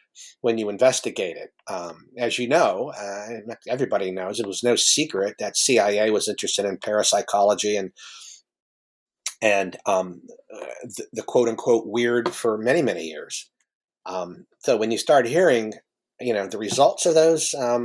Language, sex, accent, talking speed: English, male, American, 155 wpm